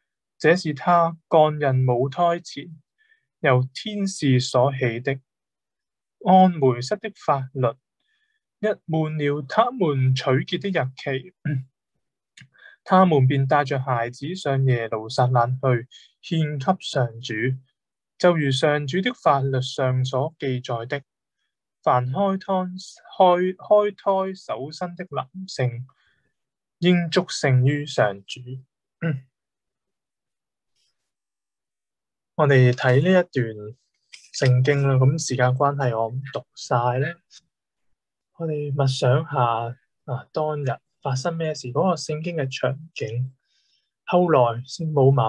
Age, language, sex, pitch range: 20-39, Chinese, male, 125-165 Hz